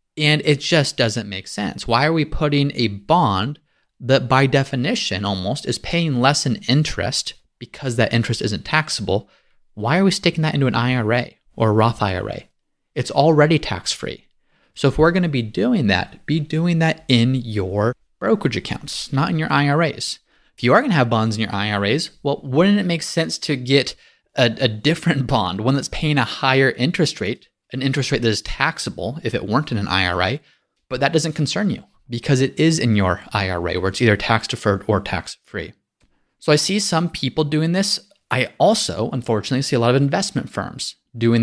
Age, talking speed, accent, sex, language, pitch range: 30-49, 200 wpm, American, male, English, 110-155 Hz